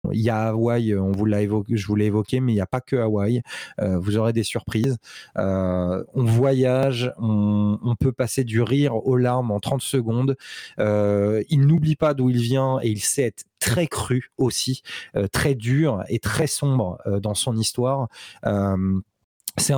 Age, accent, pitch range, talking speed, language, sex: 20-39, French, 105-130 Hz, 175 wpm, French, male